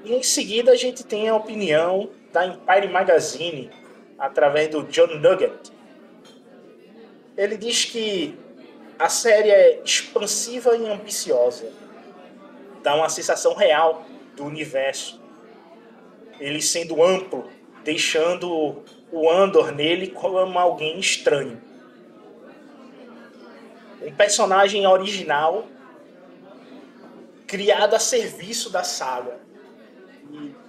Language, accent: Portuguese, Brazilian